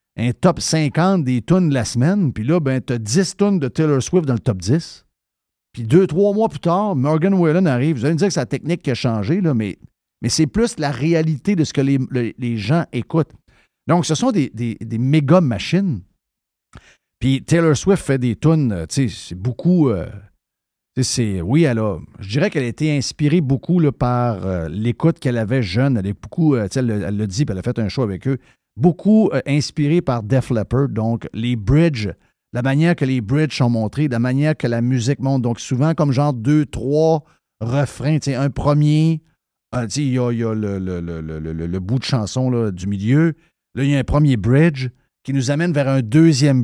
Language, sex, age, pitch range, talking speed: French, male, 50-69, 120-160 Hz, 225 wpm